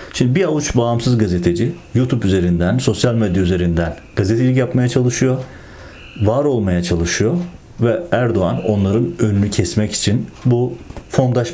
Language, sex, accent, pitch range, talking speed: Turkish, male, native, 95-125 Hz, 125 wpm